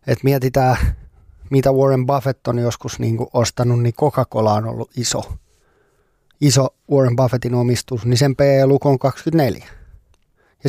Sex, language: male, Finnish